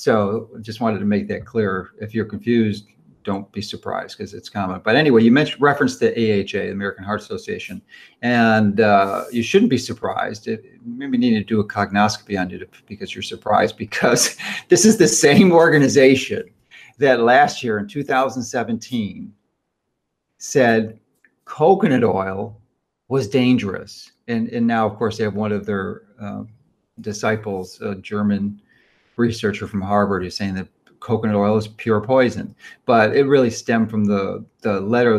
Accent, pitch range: American, 100-120 Hz